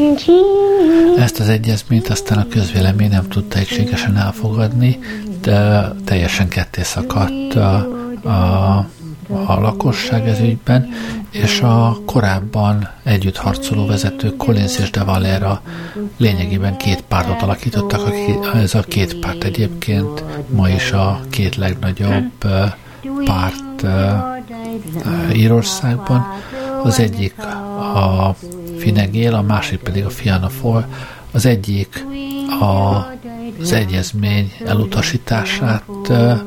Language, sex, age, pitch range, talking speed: Hungarian, male, 60-79, 100-130 Hz, 100 wpm